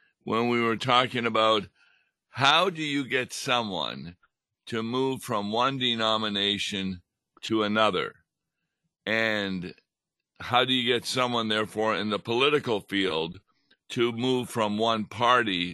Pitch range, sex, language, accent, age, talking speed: 105-125 Hz, male, English, American, 60-79, 125 wpm